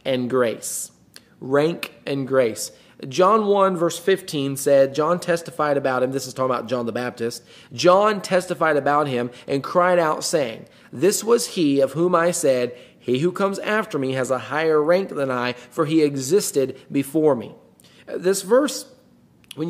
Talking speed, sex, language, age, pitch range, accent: 170 wpm, male, English, 30-49, 140-215 Hz, American